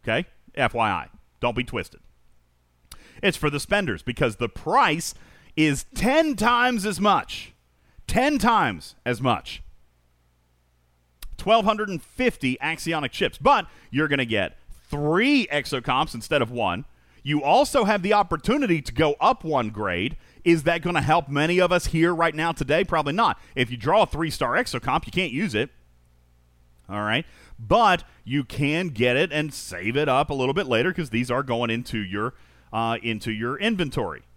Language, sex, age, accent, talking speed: English, male, 40-59, American, 160 wpm